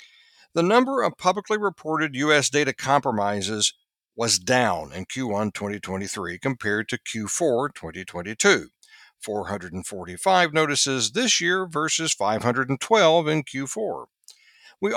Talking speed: 105 wpm